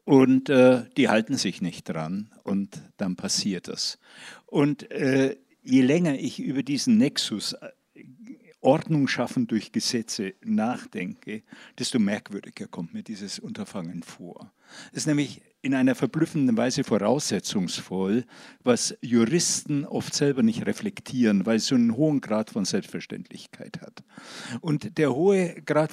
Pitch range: 145-220 Hz